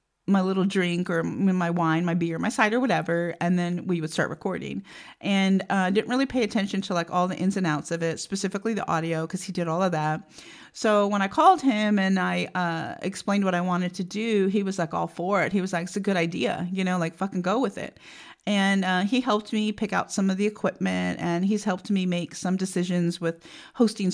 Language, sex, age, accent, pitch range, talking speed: English, female, 40-59, American, 180-225 Hz, 235 wpm